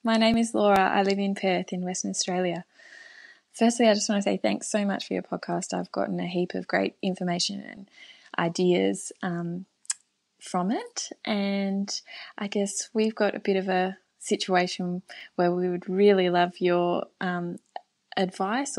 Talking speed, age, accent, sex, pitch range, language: 170 wpm, 20-39, Australian, female, 175-215 Hz, English